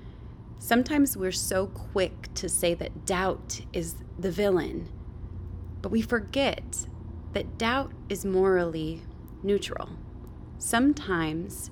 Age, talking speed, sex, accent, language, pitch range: 20-39, 100 wpm, female, American, English, 160-200 Hz